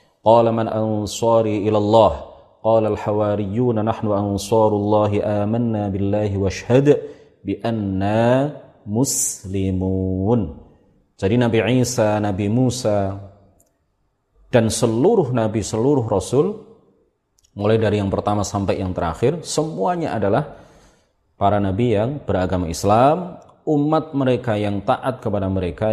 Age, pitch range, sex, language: 30-49, 95-115 Hz, male, Indonesian